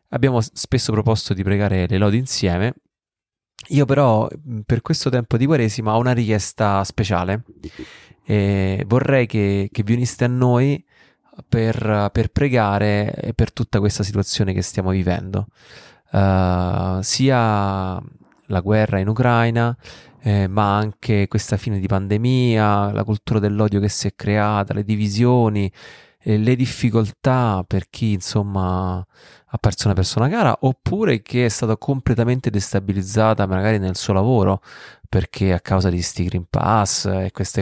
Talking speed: 135 wpm